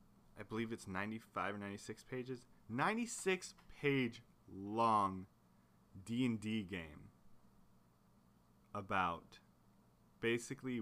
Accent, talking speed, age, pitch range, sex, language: American, 80 wpm, 20-39, 100-135 Hz, male, English